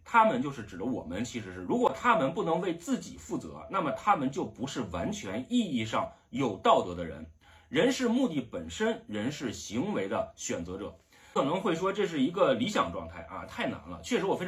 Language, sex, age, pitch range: Chinese, male, 30-49, 165-245 Hz